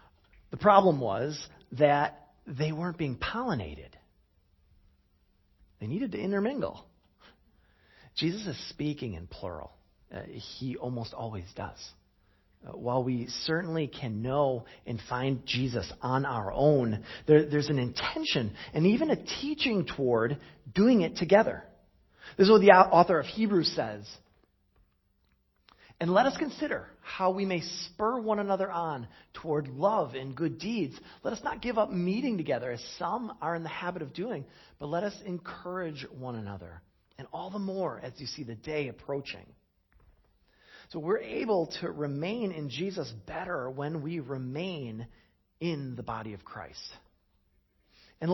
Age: 40-59